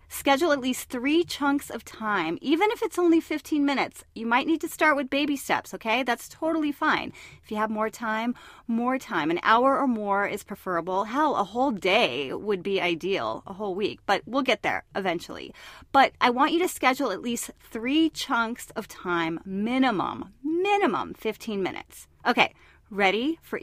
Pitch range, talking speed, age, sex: 220-320 Hz, 185 wpm, 30-49, female